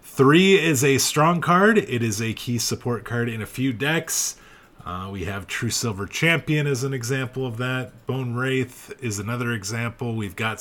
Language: English